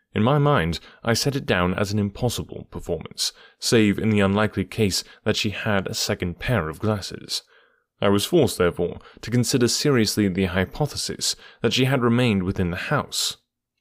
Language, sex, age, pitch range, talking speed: English, male, 30-49, 90-115 Hz, 175 wpm